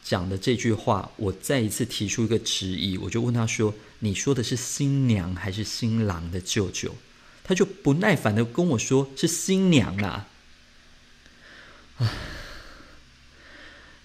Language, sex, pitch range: Chinese, male, 100-160 Hz